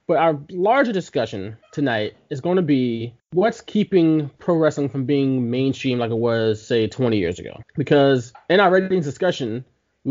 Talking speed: 170 wpm